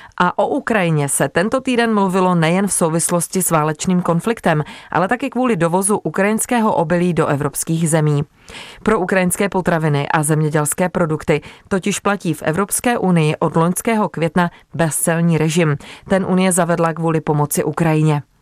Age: 30-49